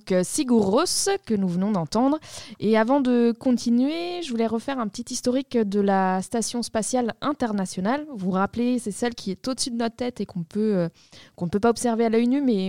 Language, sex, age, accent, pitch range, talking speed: French, female, 20-39, French, 190-240 Hz, 210 wpm